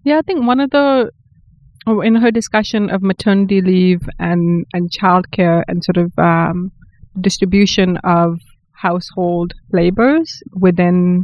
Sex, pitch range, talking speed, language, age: female, 175-205 Hz, 130 wpm, English, 20-39